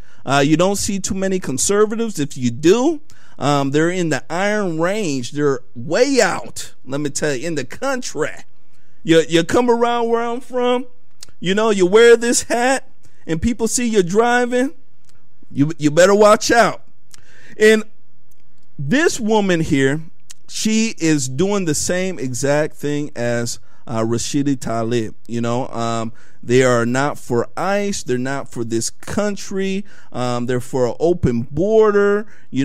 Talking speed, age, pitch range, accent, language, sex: 155 wpm, 50-69, 135-225 Hz, American, English, male